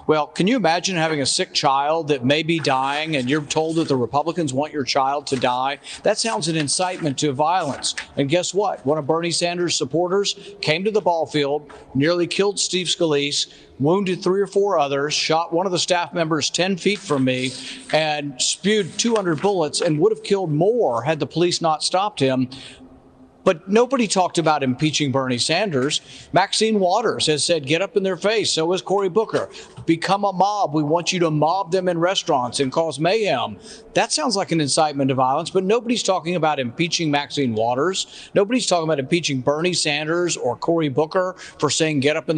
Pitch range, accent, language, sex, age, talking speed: 145-185 Hz, American, English, male, 50-69, 195 wpm